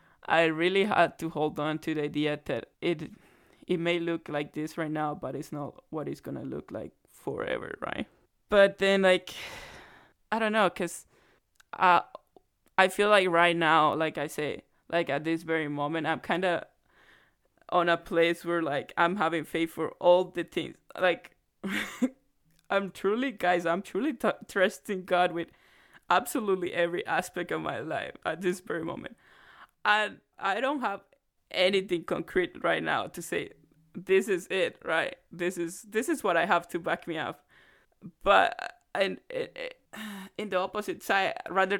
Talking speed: 170 wpm